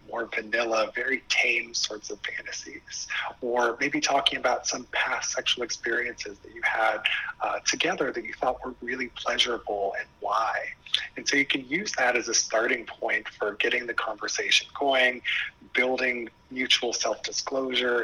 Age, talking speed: 30-49, 155 wpm